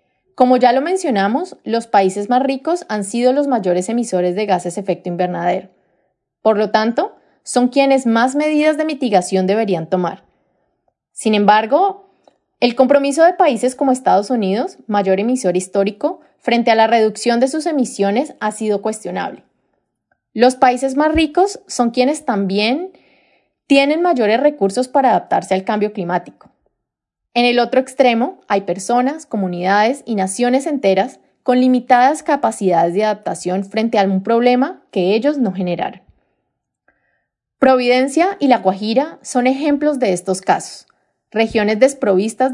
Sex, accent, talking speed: female, Colombian, 140 wpm